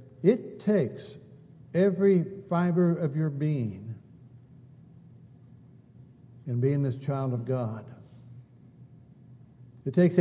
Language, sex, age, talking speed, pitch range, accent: English, male, 60-79, 90 wpm, 125-150 Hz, American